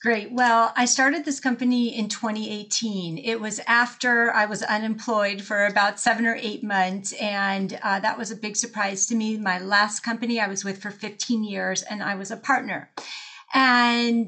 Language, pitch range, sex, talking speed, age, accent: English, 215-250 Hz, female, 185 wpm, 40-59, American